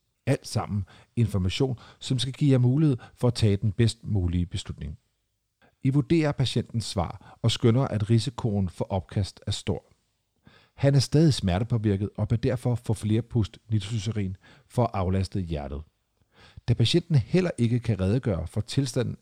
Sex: male